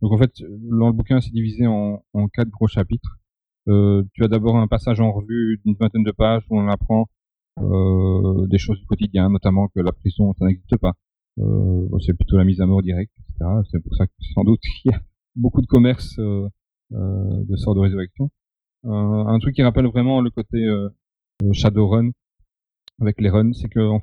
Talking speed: 205 wpm